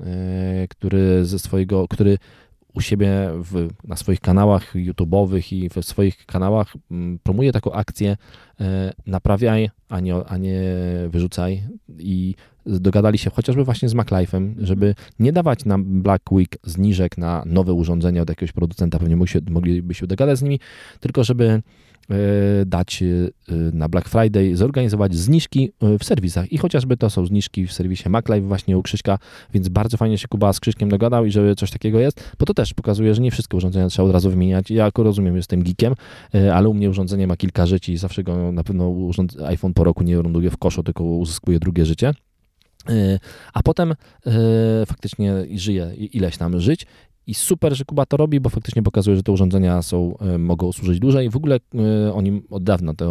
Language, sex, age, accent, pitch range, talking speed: Polish, male, 20-39, native, 90-110 Hz, 170 wpm